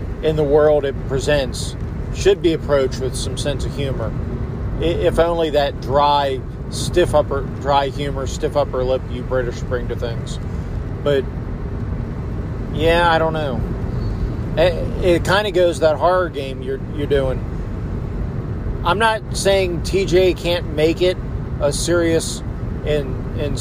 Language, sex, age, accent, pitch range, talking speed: English, male, 40-59, American, 120-150 Hz, 140 wpm